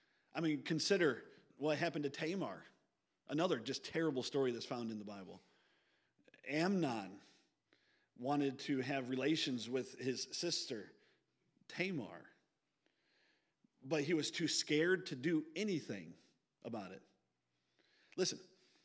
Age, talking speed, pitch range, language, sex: 40-59, 115 wpm, 130-180 Hz, English, male